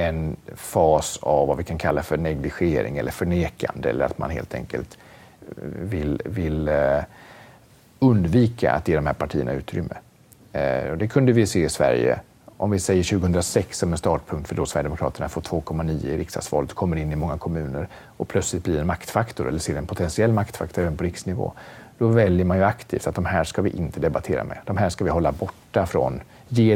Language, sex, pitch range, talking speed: Swedish, male, 80-105 Hz, 190 wpm